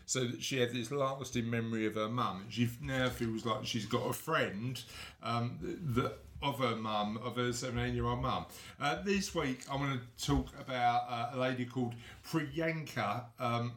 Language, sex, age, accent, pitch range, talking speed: English, male, 50-69, British, 120-150 Hz, 185 wpm